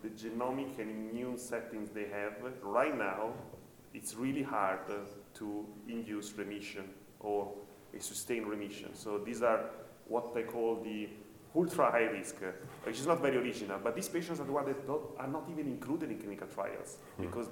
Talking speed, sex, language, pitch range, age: 160 wpm, male, English, 105-120 Hz, 30-49